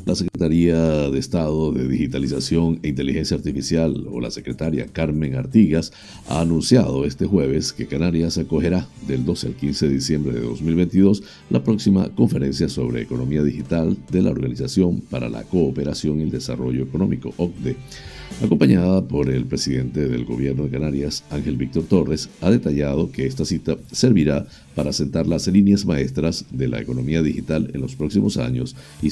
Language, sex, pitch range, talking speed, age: Spanish, male, 65-85 Hz, 160 wpm, 60-79